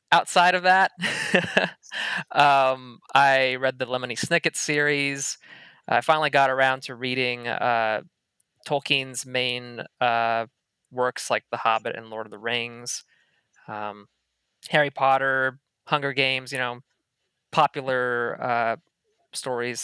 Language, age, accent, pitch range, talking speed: English, 20-39, American, 120-145 Hz, 120 wpm